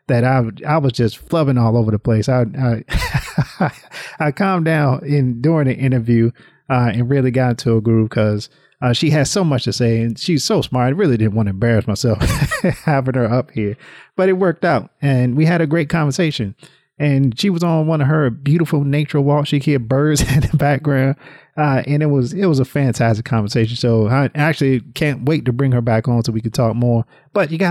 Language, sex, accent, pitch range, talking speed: English, male, American, 120-150 Hz, 220 wpm